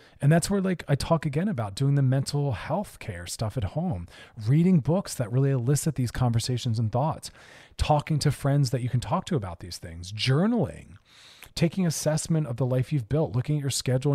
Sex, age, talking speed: male, 40-59, 205 wpm